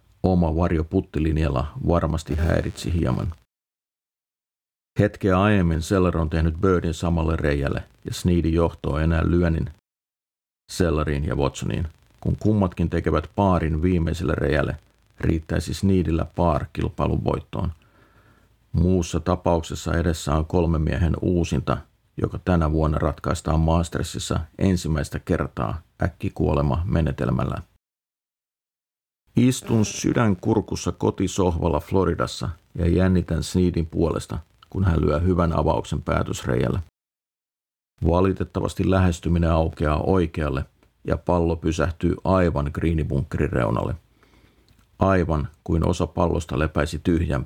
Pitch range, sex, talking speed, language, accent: 80-95 Hz, male, 100 wpm, Finnish, native